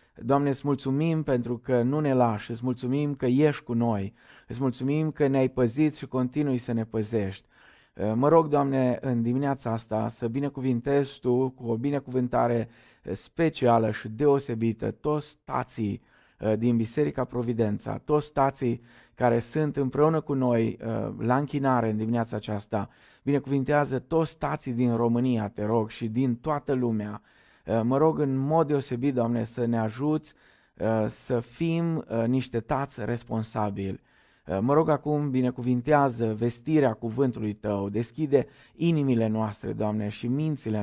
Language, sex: Romanian, male